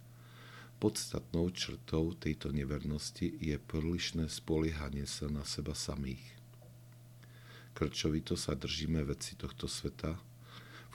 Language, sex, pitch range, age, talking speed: Slovak, male, 75-110 Hz, 50-69, 100 wpm